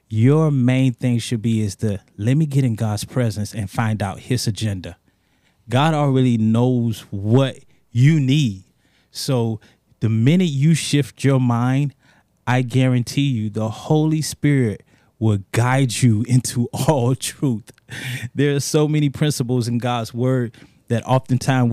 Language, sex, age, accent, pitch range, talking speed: English, male, 20-39, American, 110-135 Hz, 145 wpm